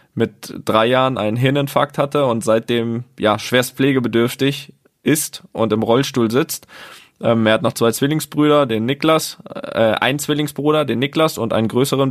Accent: German